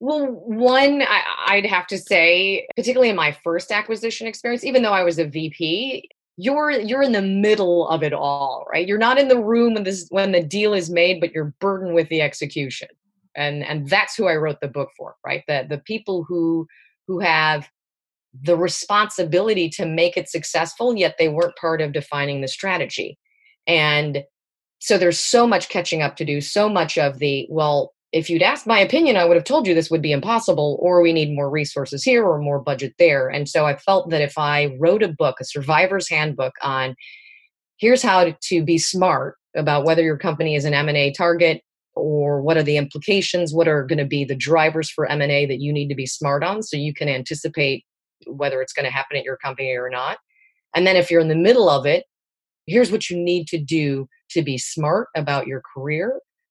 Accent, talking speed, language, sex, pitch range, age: American, 210 wpm, English, female, 145-195 Hz, 30-49